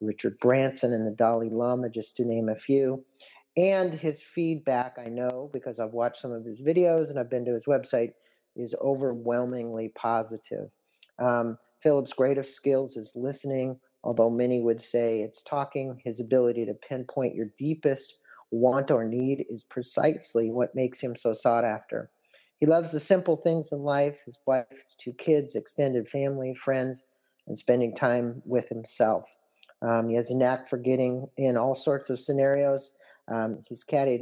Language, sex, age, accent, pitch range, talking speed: English, male, 50-69, American, 115-135 Hz, 170 wpm